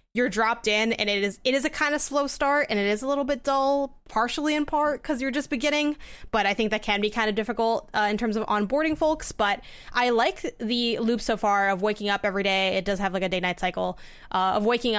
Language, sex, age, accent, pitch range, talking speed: English, female, 10-29, American, 200-255 Hz, 260 wpm